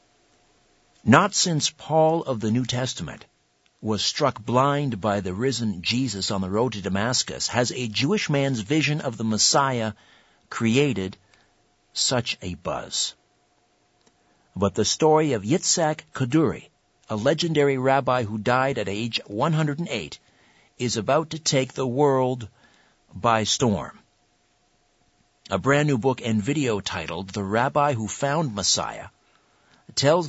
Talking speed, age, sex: 130 wpm, 60-79, male